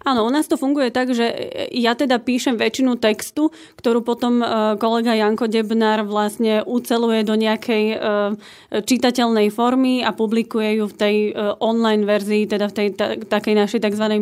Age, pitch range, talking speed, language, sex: 30-49, 215-240 Hz, 150 wpm, Slovak, female